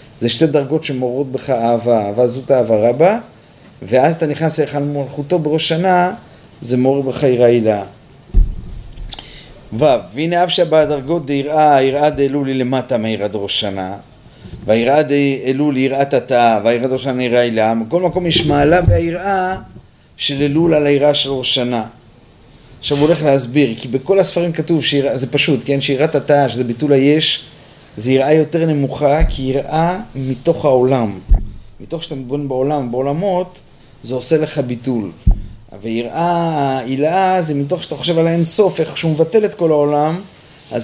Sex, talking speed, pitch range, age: male, 150 wpm, 125-155 Hz, 30-49